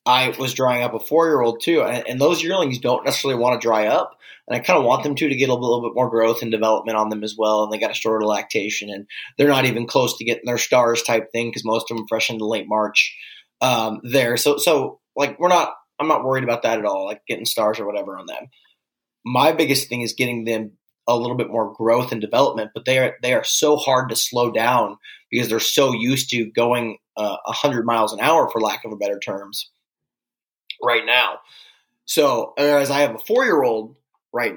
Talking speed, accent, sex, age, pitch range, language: 230 wpm, American, male, 20-39, 115-145 Hz, English